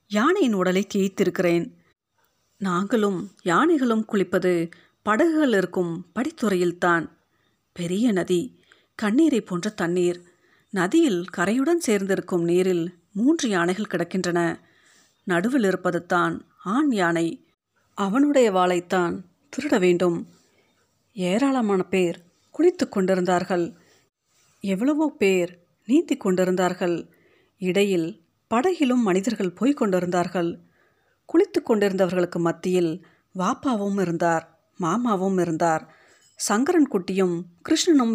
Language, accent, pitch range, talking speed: Tamil, native, 180-225 Hz, 80 wpm